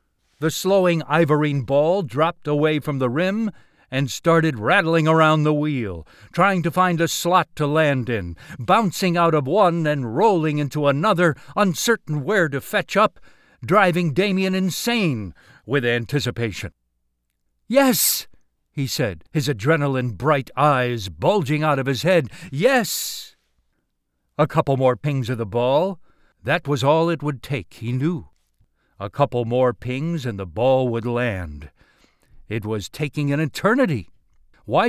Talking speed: 145 wpm